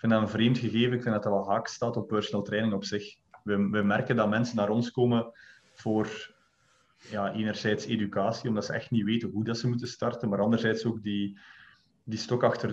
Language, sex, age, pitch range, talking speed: Dutch, male, 20-39, 100-115 Hz, 220 wpm